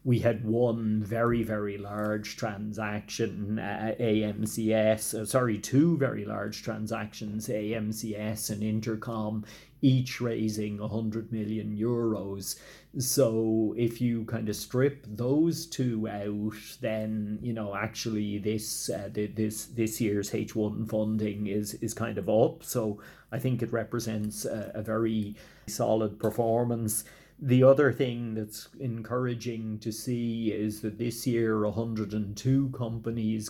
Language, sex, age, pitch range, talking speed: English, male, 30-49, 110-120 Hz, 130 wpm